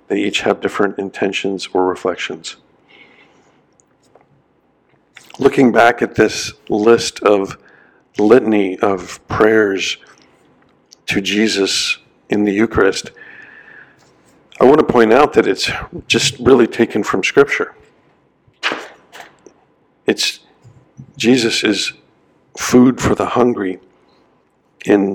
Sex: male